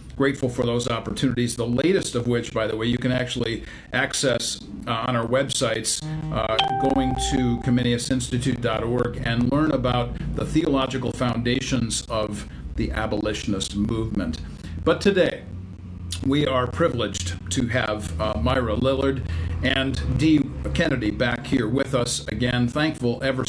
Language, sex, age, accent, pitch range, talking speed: English, male, 50-69, American, 110-135 Hz, 135 wpm